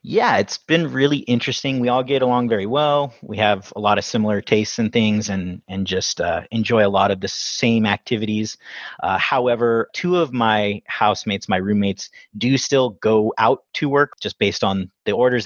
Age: 30-49